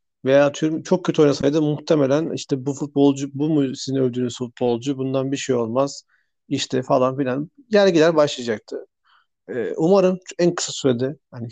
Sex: male